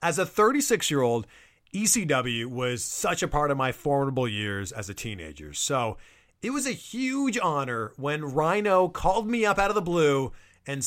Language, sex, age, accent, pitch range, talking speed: English, male, 30-49, American, 115-175 Hz, 170 wpm